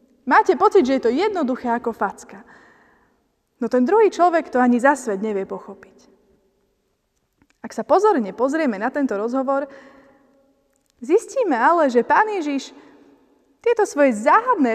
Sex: female